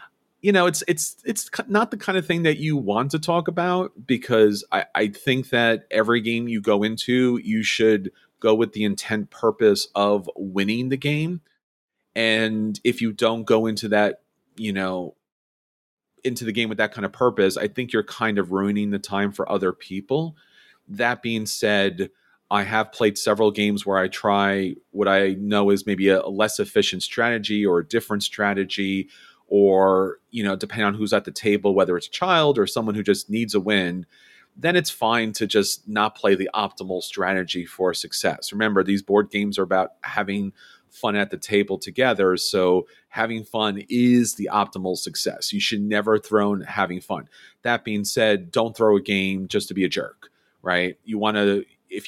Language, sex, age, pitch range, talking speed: English, male, 40-59, 100-115 Hz, 190 wpm